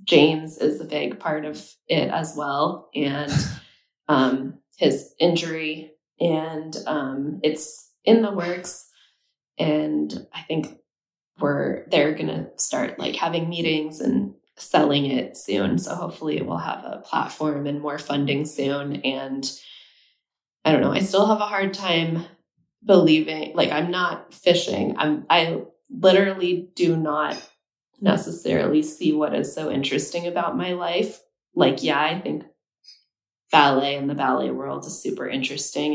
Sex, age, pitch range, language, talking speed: female, 20-39, 145-175 Hz, English, 140 wpm